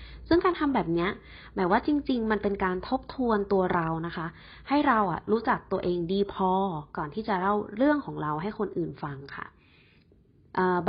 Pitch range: 175-235 Hz